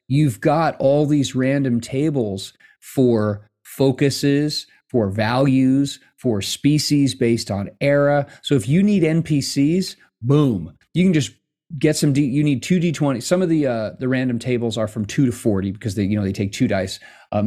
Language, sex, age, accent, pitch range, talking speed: English, male, 30-49, American, 115-150 Hz, 175 wpm